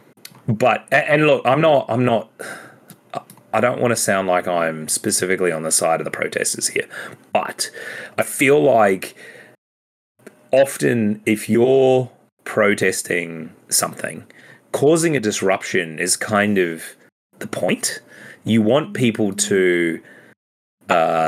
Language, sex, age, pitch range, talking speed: English, male, 30-49, 90-120 Hz, 125 wpm